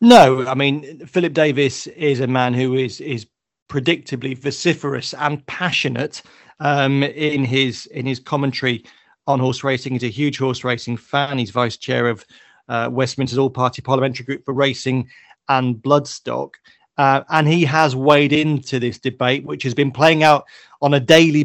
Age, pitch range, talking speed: 30-49, 125-145 Hz, 165 wpm